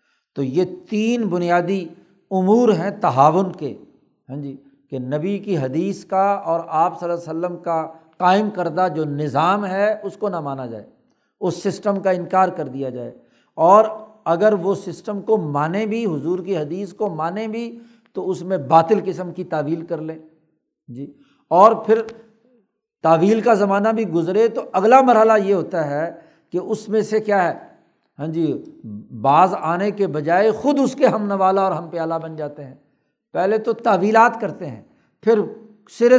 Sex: male